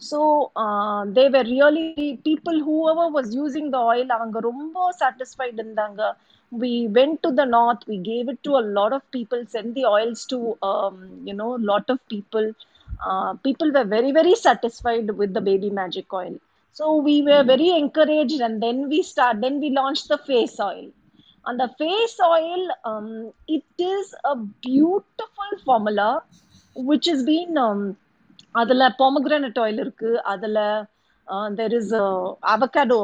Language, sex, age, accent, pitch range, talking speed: Tamil, female, 30-49, native, 220-295 Hz, 155 wpm